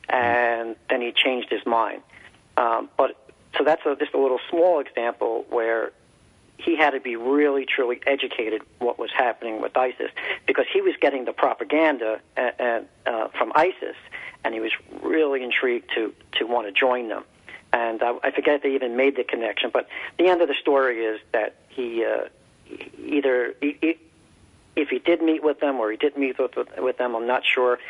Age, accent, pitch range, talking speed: 50-69, American, 120-155 Hz, 190 wpm